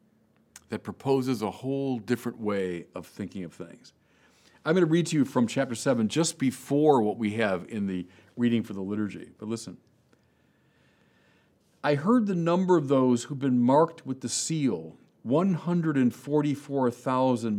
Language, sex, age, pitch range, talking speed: English, male, 50-69, 115-150 Hz, 155 wpm